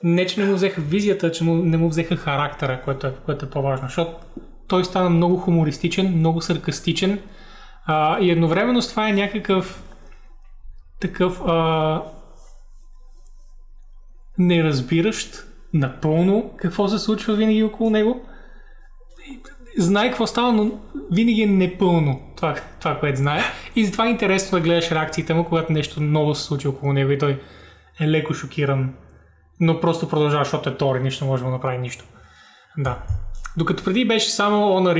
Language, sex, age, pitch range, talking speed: Bulgarian, male, 20-39, 140-195 Hz, 155 wpm